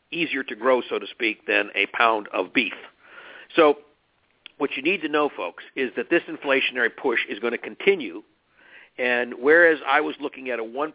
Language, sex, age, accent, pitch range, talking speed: English, male, 50-69, American, 120-160 Hz, 190 wpm